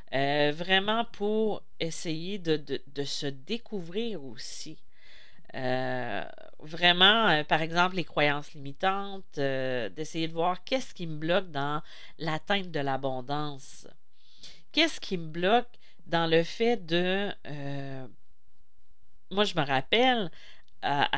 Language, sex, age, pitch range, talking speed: French, female, 40-59, 140-200 Hz, 120 wpm